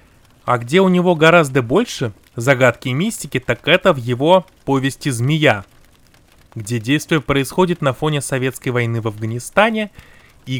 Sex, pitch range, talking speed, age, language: male, 120-145 Hz, 140 wpm, 30-49, Russian